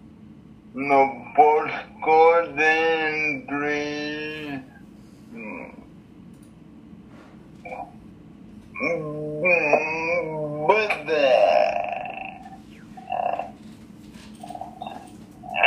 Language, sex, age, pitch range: English, male, 60-79, 150-180 Hz